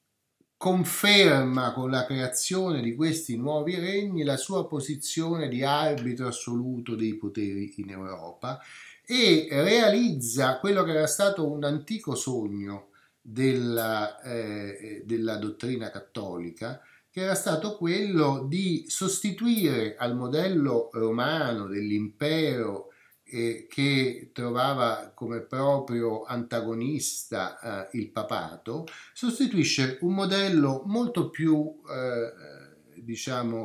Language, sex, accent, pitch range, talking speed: Italian, male, native, 115-160 Hz, 100 wpm